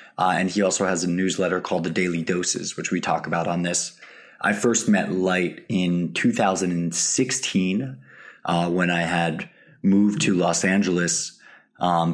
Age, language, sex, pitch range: 20-39, English, male, 85-95 Hz